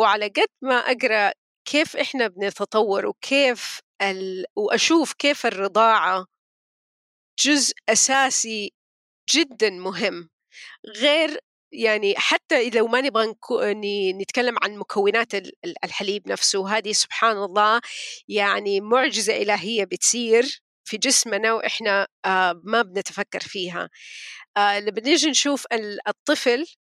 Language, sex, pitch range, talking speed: Arabic, female, 200-250 Hz, 95 wpm